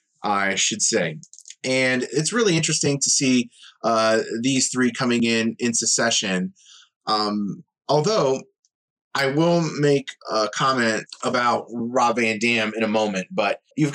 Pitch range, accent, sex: 115-155 Hz, American, male